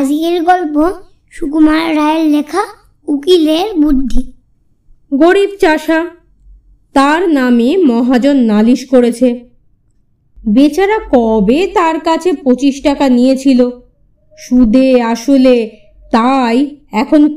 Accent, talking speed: native, 50 wpm